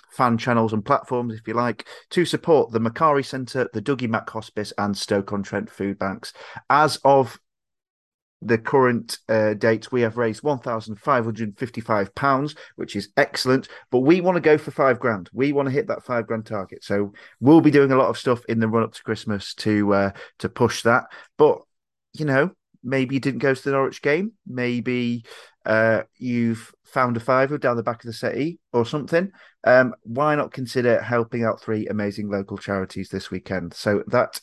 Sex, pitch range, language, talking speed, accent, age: male, 105-130 Hz, English, 200 wpm, British, 30-49